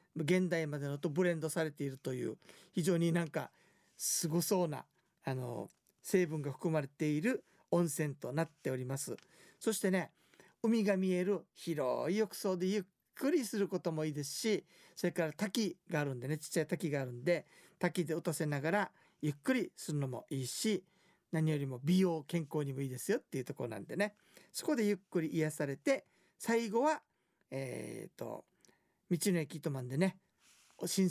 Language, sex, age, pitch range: Japanese, male, 50-69, 150-190 Hz